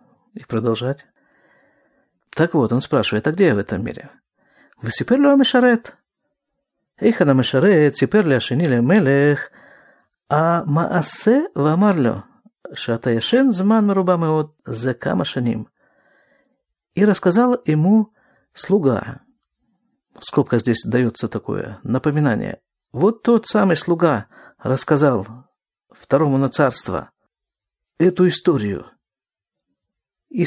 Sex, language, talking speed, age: male, Russian, 70 wpm, 50-69